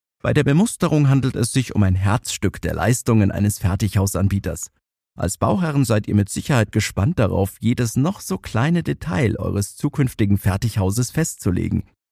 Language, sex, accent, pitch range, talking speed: German, male, German, 100-135 Hz, 150 wpm